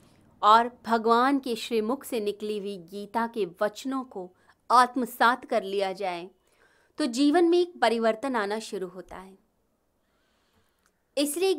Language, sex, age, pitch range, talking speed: Hindi, female, 30-49, 205-280 Hz, 130 wpm